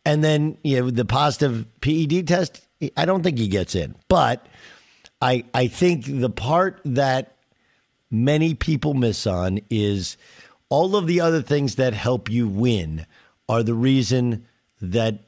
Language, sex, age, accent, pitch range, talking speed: English, male, 50-69, American, 115-155 Hz, 155 wpm